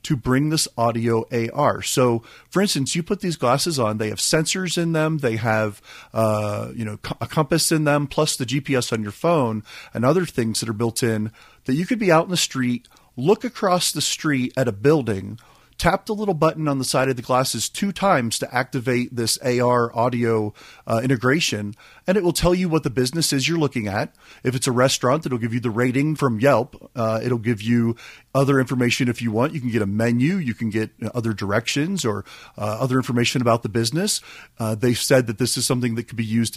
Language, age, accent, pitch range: English, 40-59, American, 115-140 Hz